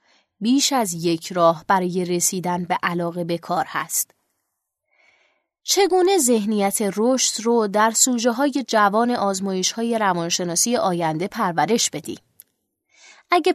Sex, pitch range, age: female, 190-260 Hz, 20-39